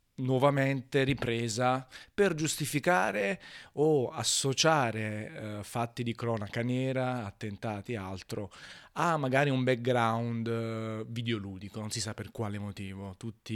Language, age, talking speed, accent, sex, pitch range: Italian, 30-49, 120 wpm, native, male, 110-130 Hz